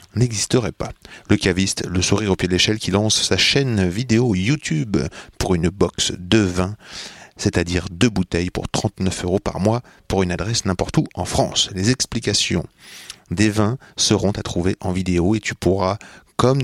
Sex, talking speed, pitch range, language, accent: male, 175 wpm, 90-115 Hz, French, French